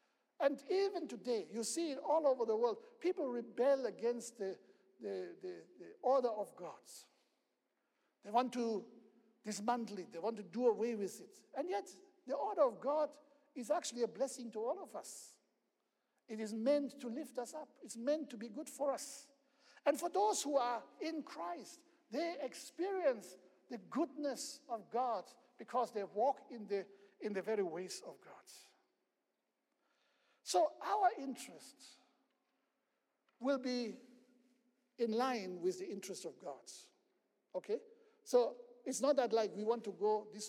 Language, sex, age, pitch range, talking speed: English, male, 60-79, 220-290 Hz, 160 wpm